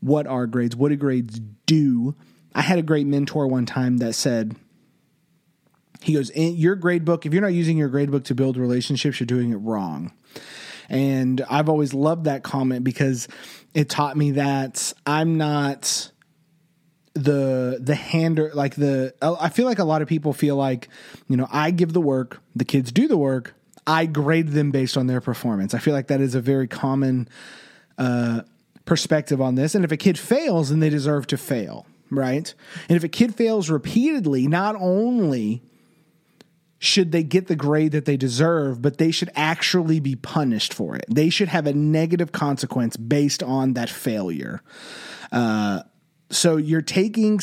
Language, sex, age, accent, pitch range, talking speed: English, male, 30-49, American, 135-165 Hz, 180 wpm